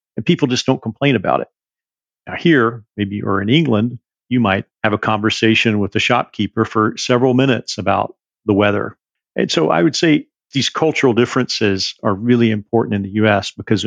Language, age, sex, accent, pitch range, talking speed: English, 50-69, male, American, 105-120 Hz, 180 wpm